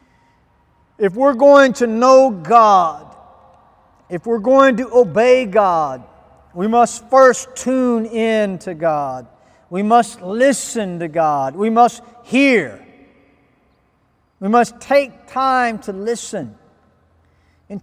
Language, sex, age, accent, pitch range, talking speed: English, male, 40-59, American, 205-255 Hz, 115 wpm